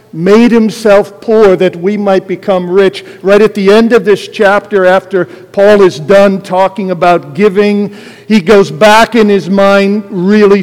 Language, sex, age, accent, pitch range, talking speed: English, male, 50-69, American, 185-215 Hz, 165 wpm